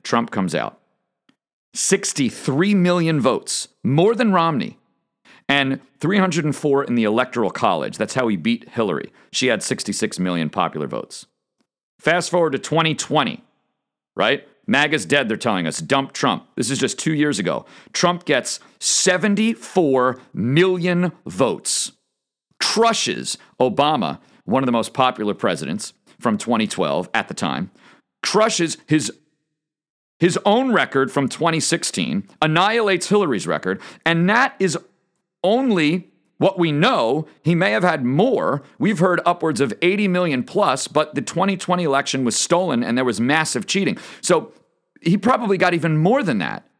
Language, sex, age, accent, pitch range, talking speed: English, male, 50-69, American, 145-190 Hz, 140 wpm